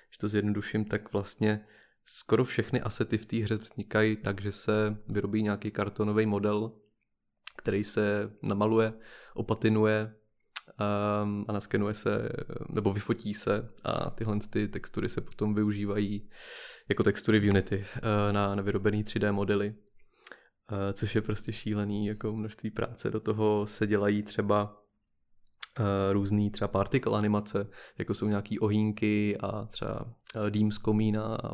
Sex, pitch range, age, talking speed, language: male, 105-110 Hz, 20-39, 130 wpm, Czech